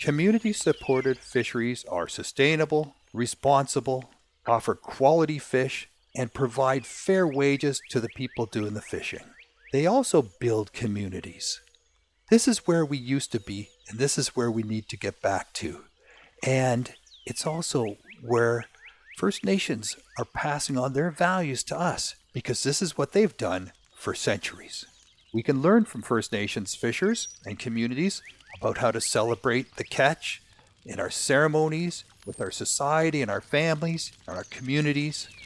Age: 50-69